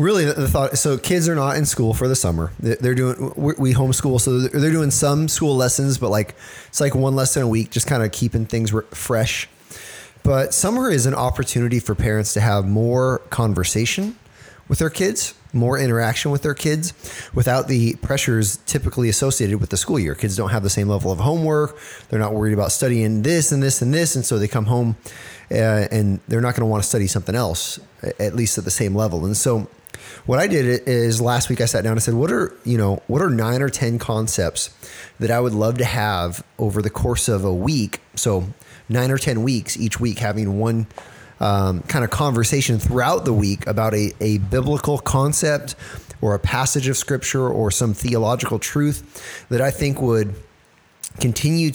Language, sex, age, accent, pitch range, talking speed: English, male, 20-39, American, 105-135 Hz, 200 wpm